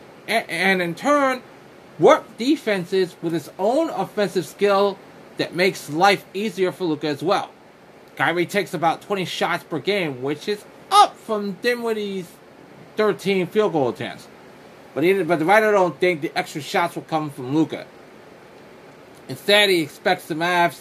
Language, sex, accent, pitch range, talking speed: English, male, American, 160-205 Hz, 155 wpm